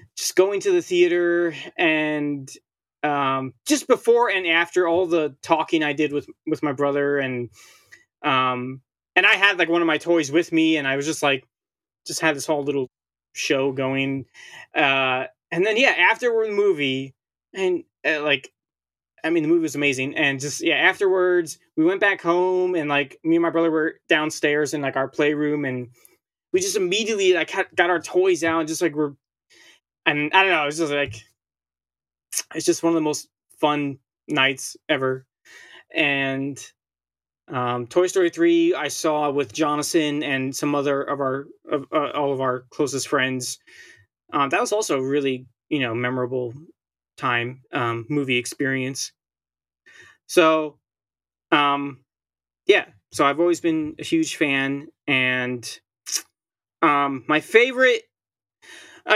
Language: English